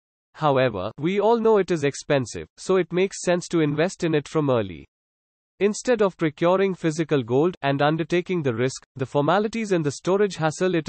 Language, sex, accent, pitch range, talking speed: English, male, Indian, 130-175 Hz, 180 wpm